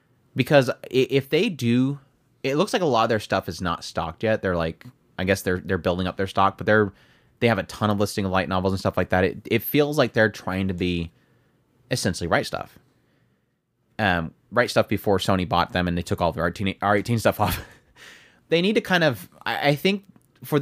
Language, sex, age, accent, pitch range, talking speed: English, male, 30-49, American, 100-140 Hz, 225 wpm